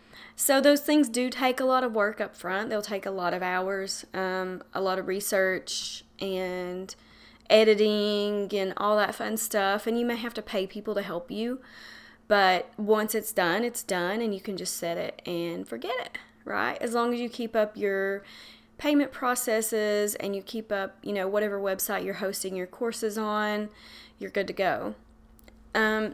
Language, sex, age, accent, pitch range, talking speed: English, female, 30-49, American, 195-240 Hz, 190 wpm